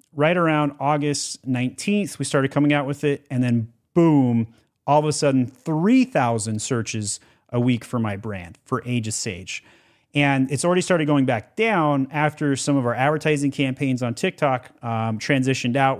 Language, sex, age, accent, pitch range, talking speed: English, male, 30-49, American, 125-155 Hz, 175 wpm